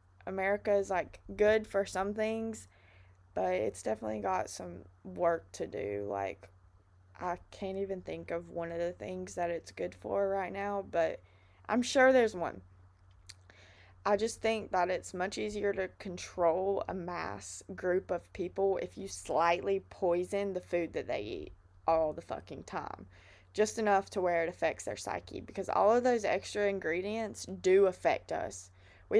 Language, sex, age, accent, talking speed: English, female, 20-39, American, 165 wpm